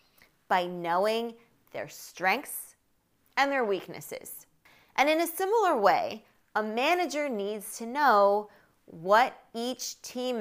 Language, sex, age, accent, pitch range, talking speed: English, female, 20-39, American, 175-230 Hz, 115 wpm